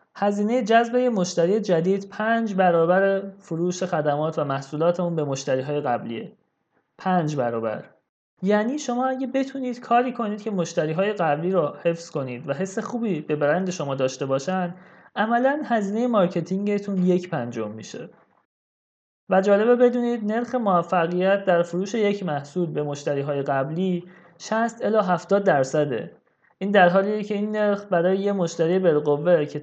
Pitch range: 155-210 Hz